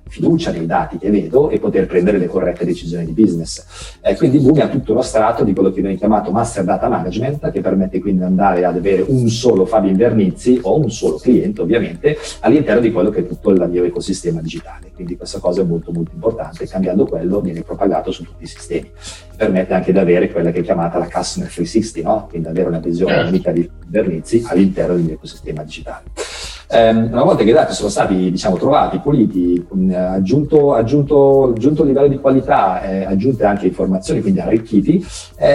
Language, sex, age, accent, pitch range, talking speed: Italian, male, 40-59, native, 90-110 Hz, 195 wpm